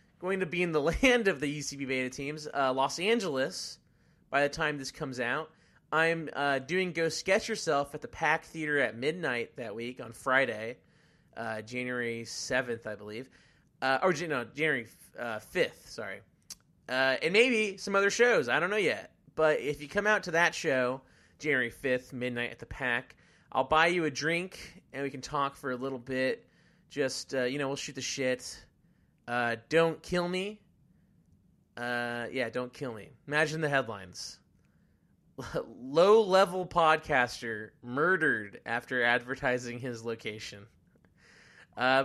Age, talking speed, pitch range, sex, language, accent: 30-49, 165 wpm, 125-170 Hz, male, English, American